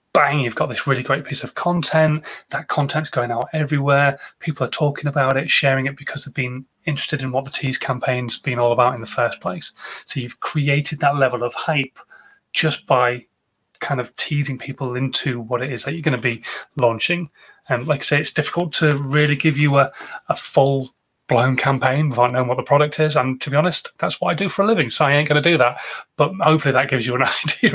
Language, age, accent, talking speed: English, 30-49, British, 230 wpm